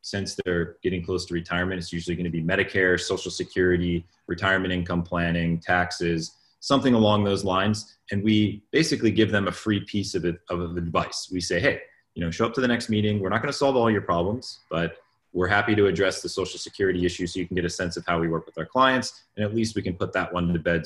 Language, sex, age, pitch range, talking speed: English, male, 30-49, 85-100 Hz, 235 wpm